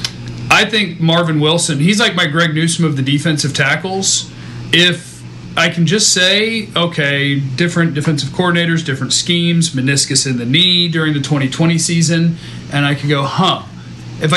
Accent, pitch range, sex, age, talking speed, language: American, 140-170 Hz, male, 40-59, 160 wpm, English